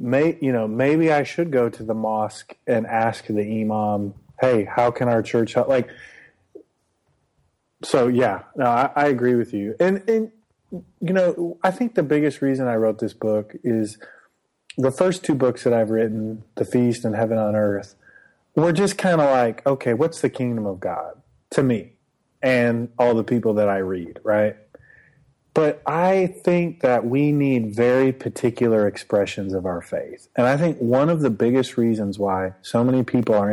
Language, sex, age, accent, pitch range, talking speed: English, male, 30-49, American, 110-135 Hz, 185 wpm